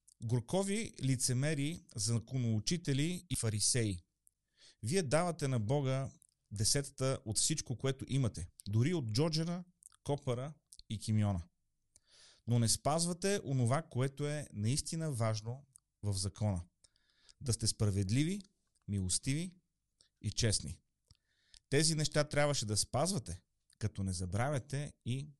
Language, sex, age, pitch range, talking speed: Bulgarian, male, 30-49, 105-145 Hz, 105 wpm